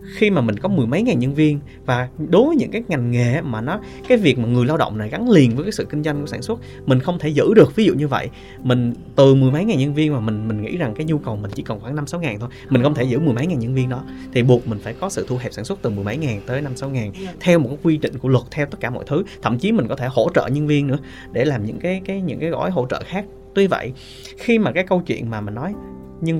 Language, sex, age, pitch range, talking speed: Vietnamese, male, 20-39, 120-160 Hz, 315 wpm